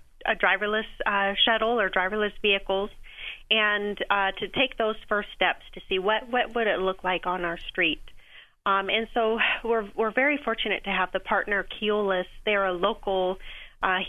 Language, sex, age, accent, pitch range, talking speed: English, female, 30-49, American, 185-210 Hz, 175 wpm